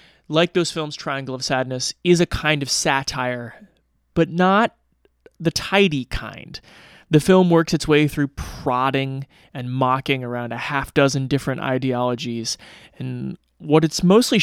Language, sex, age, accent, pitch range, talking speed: English, male, 20-39, American, 125-160 Hz, 145 wpm